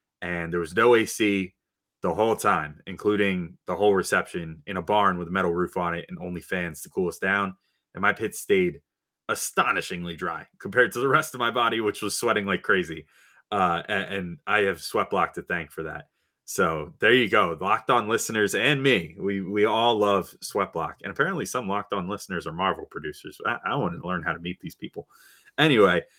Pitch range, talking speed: 95-140 Hz, 205 wpm